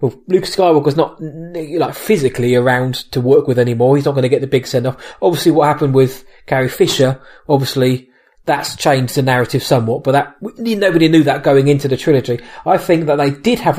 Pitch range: 130-160 Hz